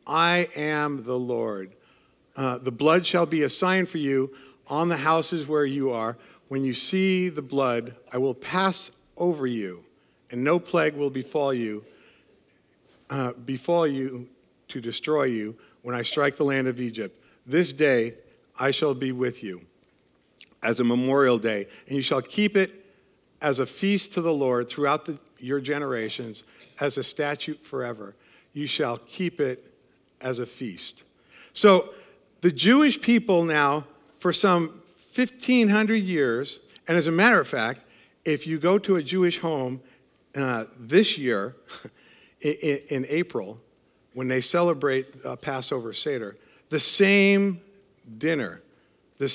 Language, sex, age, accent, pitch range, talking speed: English, male, 50-69, American, 125-175 Hz, 145 wpm